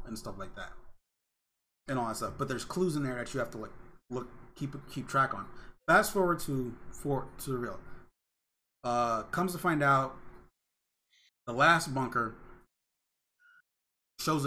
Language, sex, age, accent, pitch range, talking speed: English, male, 30-49, American, 120-145 Hz, 160 wpm